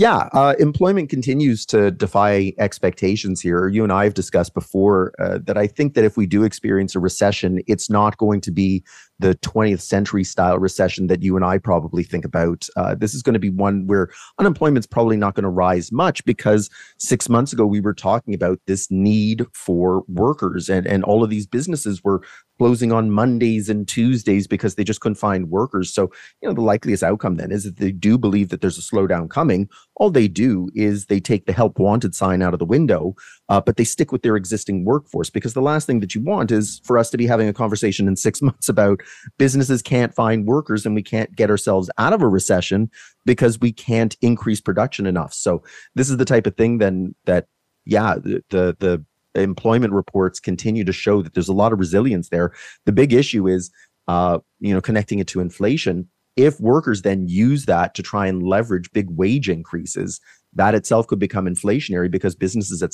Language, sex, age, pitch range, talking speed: English, male, 30-49, 95-115 Hz, 210 wpm